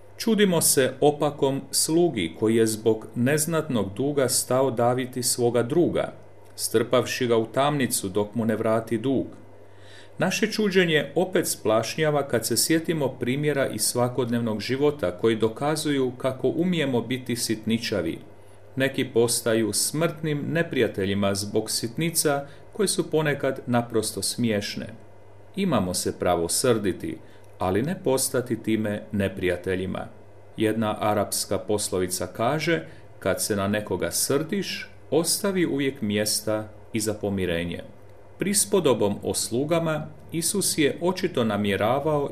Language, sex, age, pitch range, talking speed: Croatian, male, 40-59, 105-145 Hz, 115 wpm